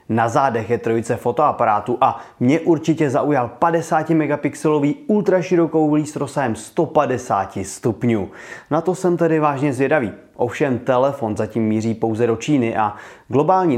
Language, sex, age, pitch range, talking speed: Czech, male, 30-49, 115-165 Hz, 130 wpm